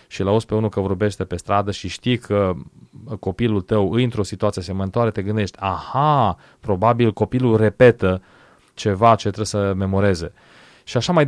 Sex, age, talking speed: male, 30-49, 165 wpm